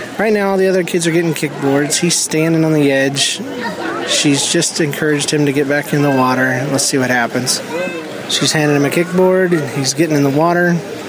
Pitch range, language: 140-165 Hz, English